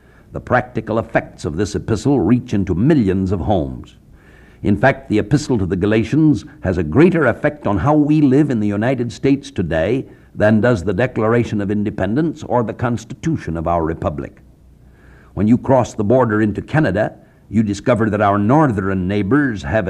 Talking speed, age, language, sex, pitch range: 170 wpm, 60-79, English, male, 100-135 Hz